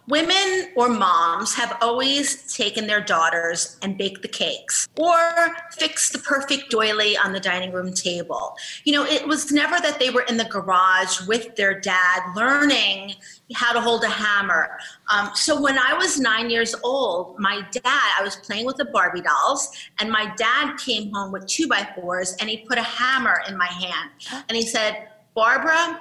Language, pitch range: English, 205-275 Hz